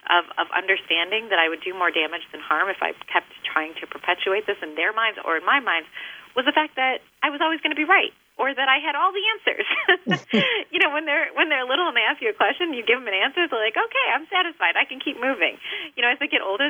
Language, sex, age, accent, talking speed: English, female, 30-49, American, 275 wpm